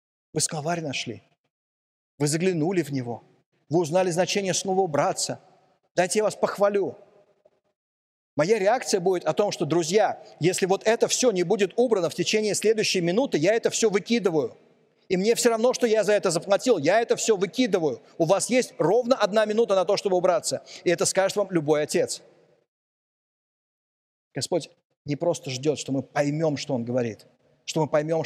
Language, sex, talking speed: Russian, male, 170 wpm